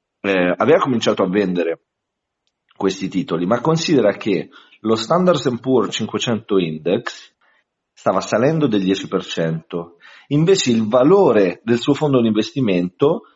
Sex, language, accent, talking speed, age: male, Italian, native, 120 wpm, 40-59